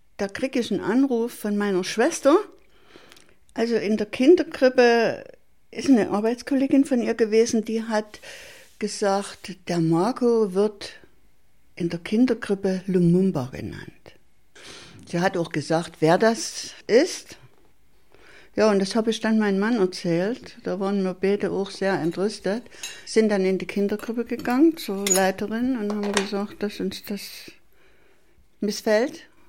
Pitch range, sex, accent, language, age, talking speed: 190-235 Hz, female, German, German, 60-79, 135 wpm